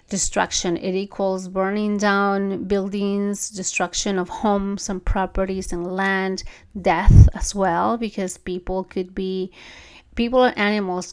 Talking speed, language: 125 wpm, English